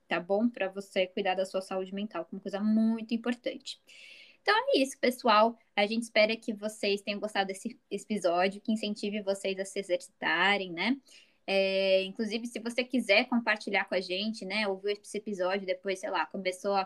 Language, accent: Portuguese, Brazilian